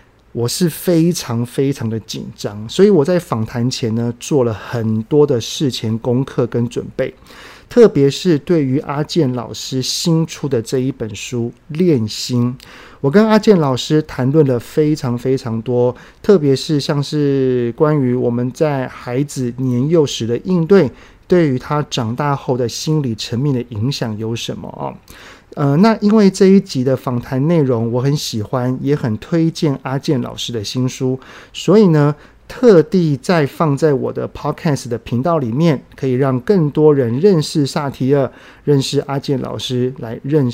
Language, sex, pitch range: Chinese, male, 120-155 Hz